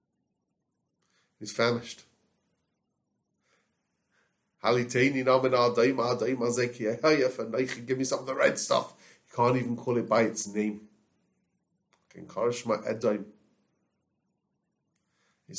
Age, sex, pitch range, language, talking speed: 30-49, male, 110-130 Hz, English, 70 wpm